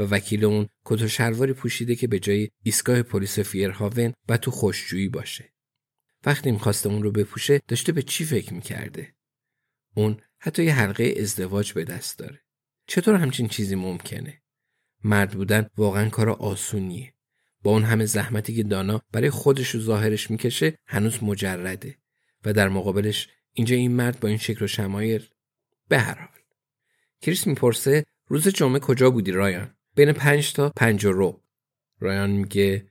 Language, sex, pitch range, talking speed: Persian, male, 105-135 Hz, 155 wpm